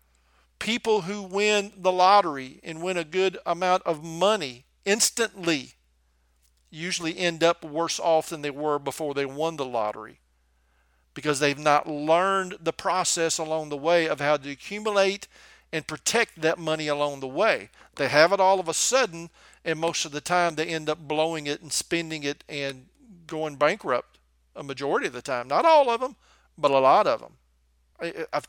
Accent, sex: American, male